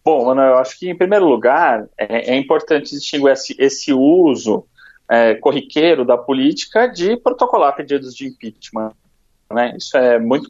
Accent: Brazilian